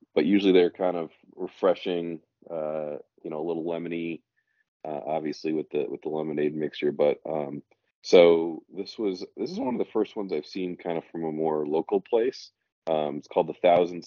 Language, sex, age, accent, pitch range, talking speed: English, male, 30-49, American, 85-105 Hz, 195 wpm